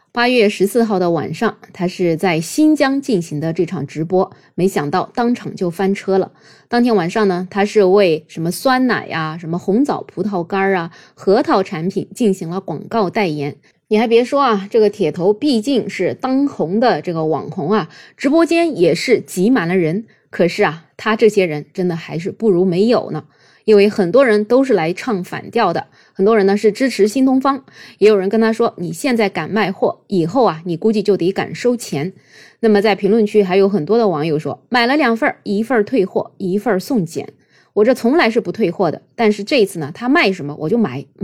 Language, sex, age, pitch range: Chinese, female, 20-39, 175-230 Hz